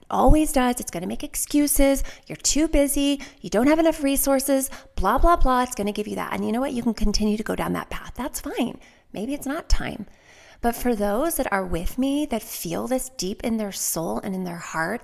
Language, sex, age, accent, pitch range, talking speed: English, female, 30-49, American, 200-260 Hz, 240 wpm